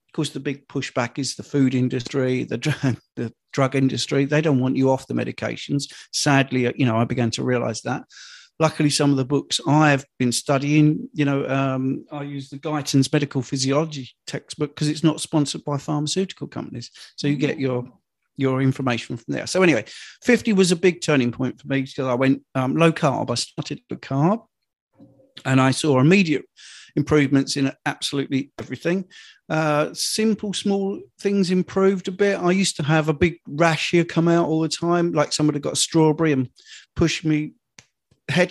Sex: male